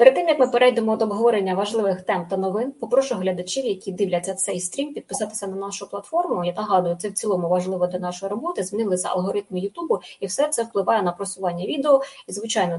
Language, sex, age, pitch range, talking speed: Russian, female, 20-39, 190-240 Hz, 195 wpm